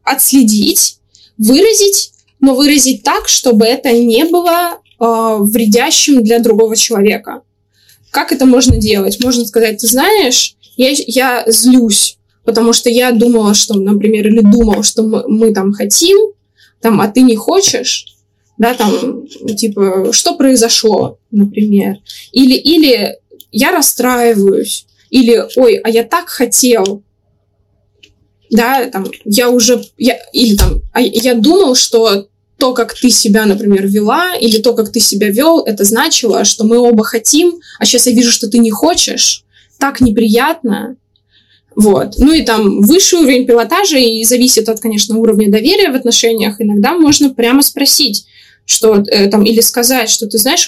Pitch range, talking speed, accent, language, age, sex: 210-255 Hz, 145 wpm, native, Russian, 20-39, female